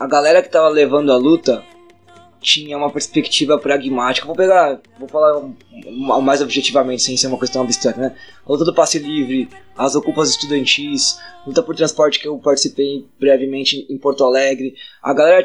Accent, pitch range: Brazilian, 135-190 Hz